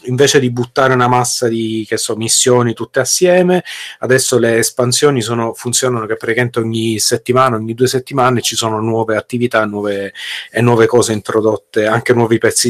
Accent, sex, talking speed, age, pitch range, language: native, male, 160 wpm, 30-49, 115-140 Hz, Italian